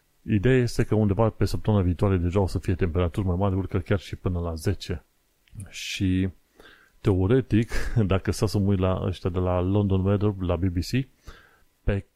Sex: male